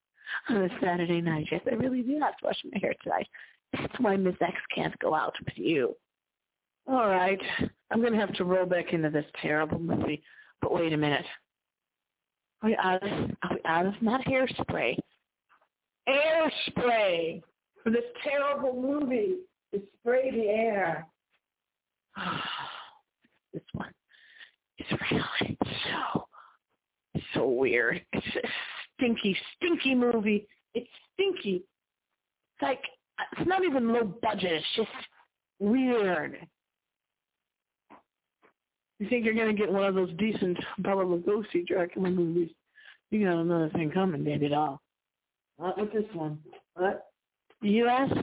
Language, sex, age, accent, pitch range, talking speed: English, female, 40-59, American, 180-260 Hz, 135 wpm